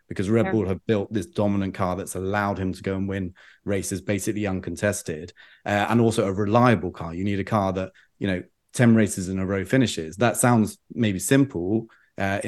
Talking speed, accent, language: 200 wpm, British, English